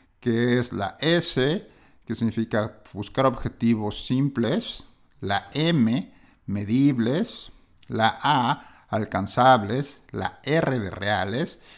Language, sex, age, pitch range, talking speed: Spanish, male, 50-69, 115-145 Hz, 95 wpm